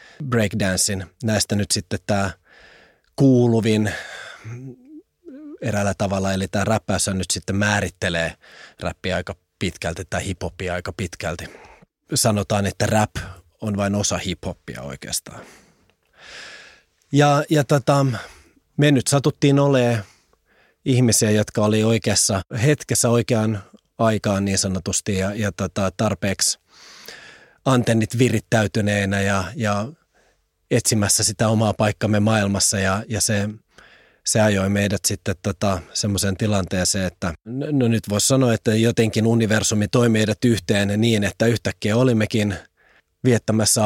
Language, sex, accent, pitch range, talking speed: English, male, Finnish, 100-115 Hz, 115 wpm